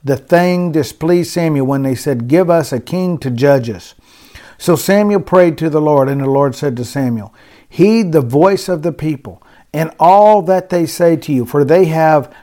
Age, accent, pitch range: 50-69, American, 135-175 Hz